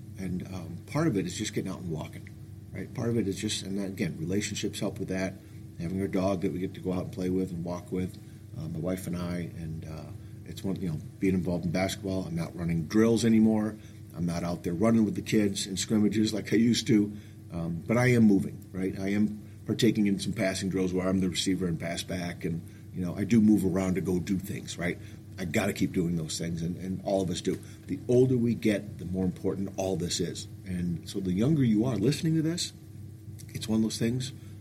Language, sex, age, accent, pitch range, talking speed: English, male, 50-69, American, 95-115 Hz, 245 wpm